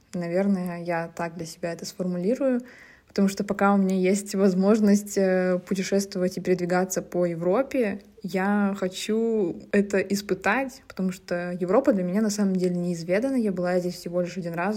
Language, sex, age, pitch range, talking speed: Russian, female, 20-39, 180-205 Hz, 160 wpm